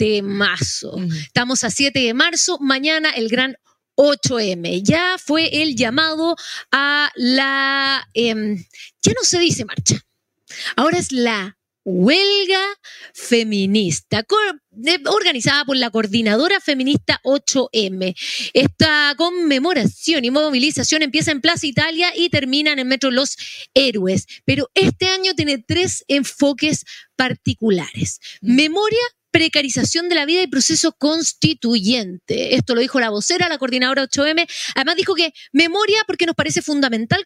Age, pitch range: 30-49, 240-320 Hz